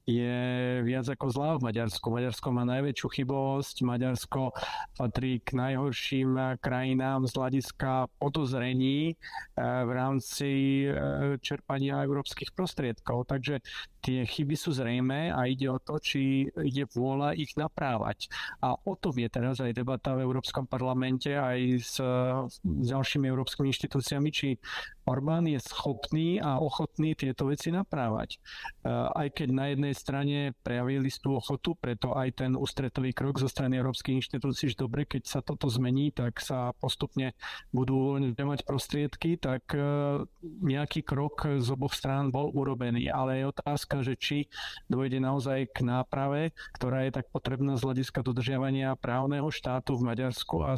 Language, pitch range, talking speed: Slovak, 130-145 Hz, 145 wpm